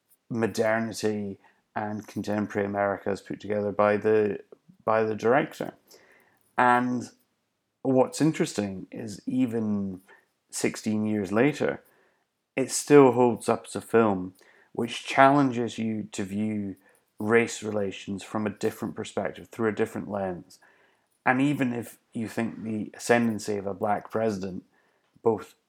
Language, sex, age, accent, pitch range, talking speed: English, male, 30-49, British, 100-120 Hz, 125 wpm